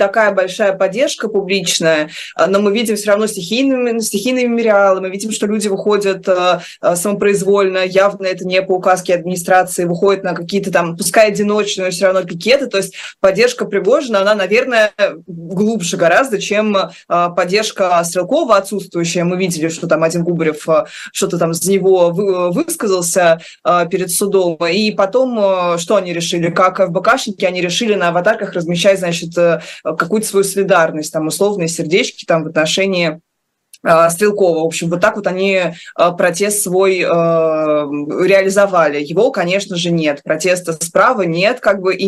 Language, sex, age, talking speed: Russian, female, 20-39, 155 wpm